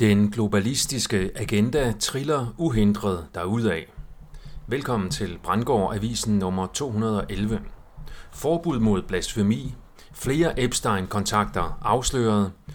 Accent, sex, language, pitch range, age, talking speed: native, male, Danish, 100-130 Hz, 40-59, 85 wpm